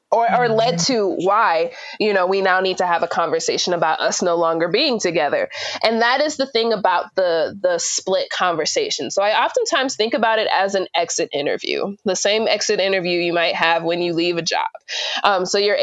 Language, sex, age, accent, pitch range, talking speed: English, female, 20-39, American, 180-240 Hz, 210 wpm